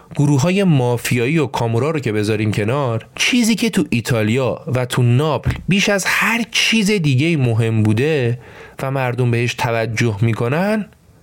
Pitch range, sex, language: 115-165 Hz, male, Persian